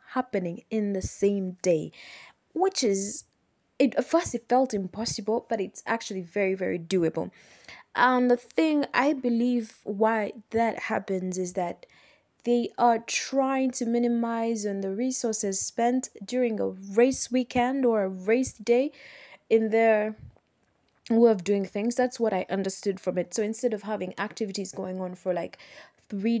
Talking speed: 155 wpm